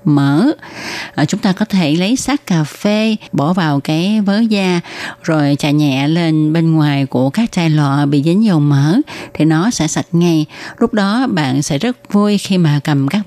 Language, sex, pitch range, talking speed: Vietnamese, female, 155-205 Hz, 200 wpm